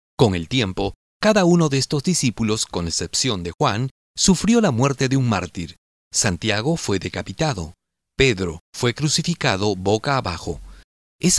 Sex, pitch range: male, 95-135 Hz